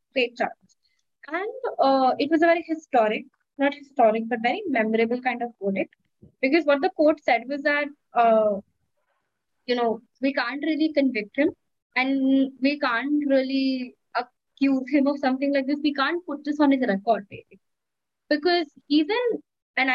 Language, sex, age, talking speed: English, female, 20-39, 160 wpm